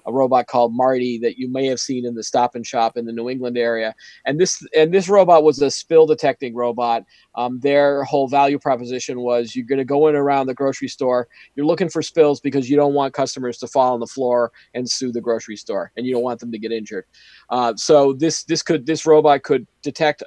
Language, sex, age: English, male, 40-59